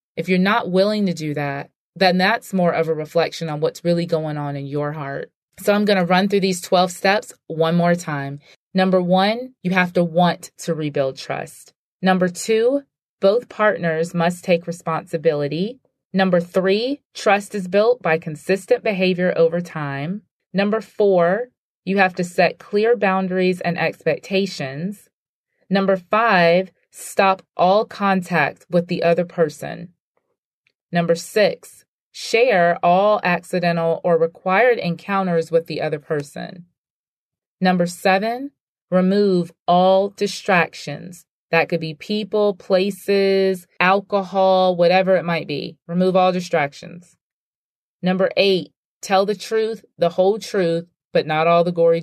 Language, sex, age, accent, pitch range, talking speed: English, female, 30-49, American, 165-195 Hz, 140 wpm